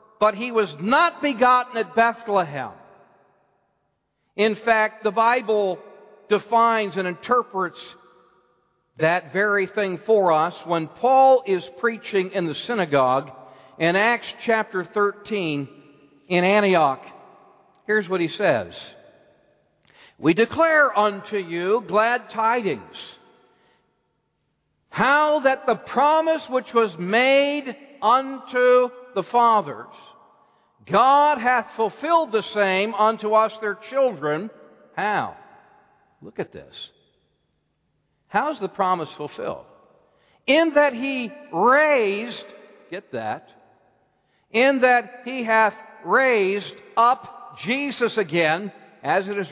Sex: male